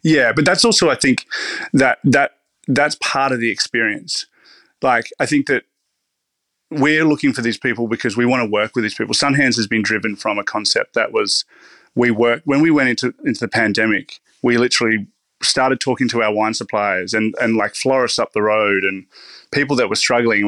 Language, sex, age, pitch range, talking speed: English, male, 20-39, 110-125 Hz, 200 wpm